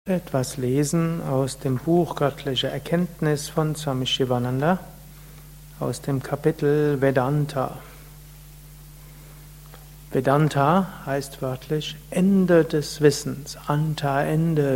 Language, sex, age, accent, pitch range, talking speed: German, male, 60-79, German, 145-175 Hz, 90 wpm